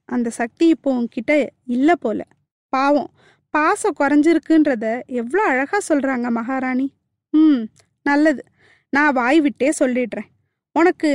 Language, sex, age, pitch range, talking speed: Tamil, female, 20-39, 255-330 Hz, 100 wpm